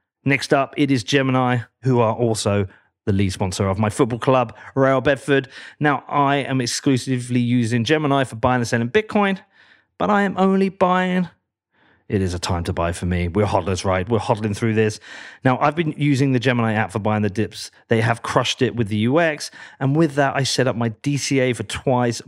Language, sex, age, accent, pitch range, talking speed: English, male, 40-59, British, 110-140 Hz, 205 wpm